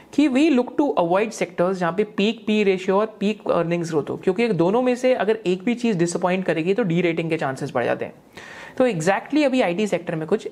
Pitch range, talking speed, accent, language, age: 180-240 Hz, 210 wpm, native, Hindi, 30-49